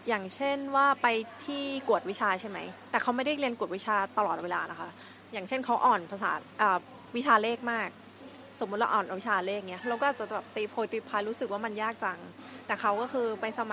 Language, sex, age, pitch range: Thai, female, 20-39, 205-250 Hz